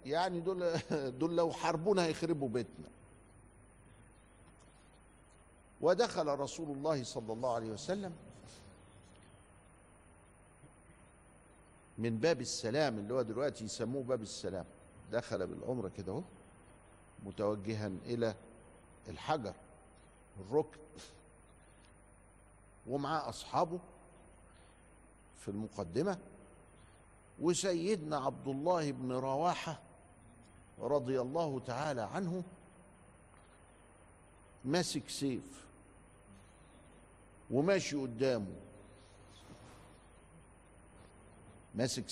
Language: Arabic